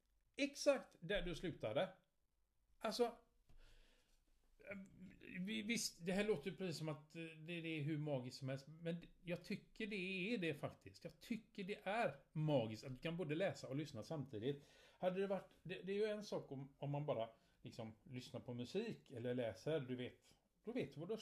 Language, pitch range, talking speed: Swedish, 135-185 Hz, 185 wpm